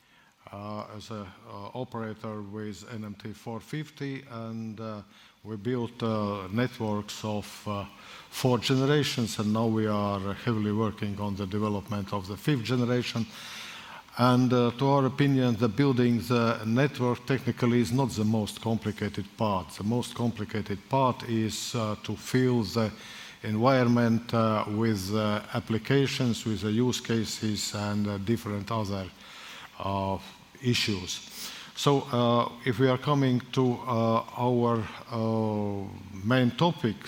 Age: 50-69